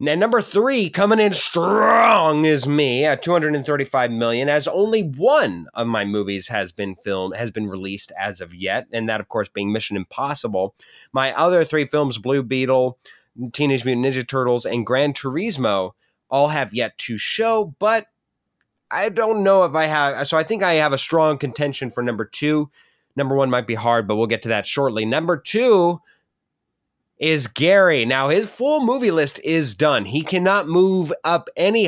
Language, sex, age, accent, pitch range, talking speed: English, male, 20-39, American, 115-170 Hz, 185 wpm